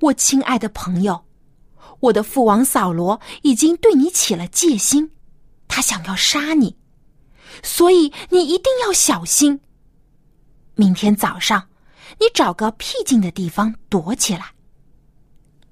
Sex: female